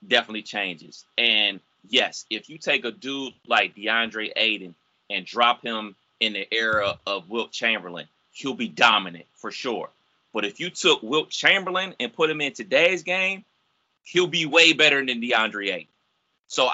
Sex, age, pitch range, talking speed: male, 30-49, 110-155 Hz, 165 wpm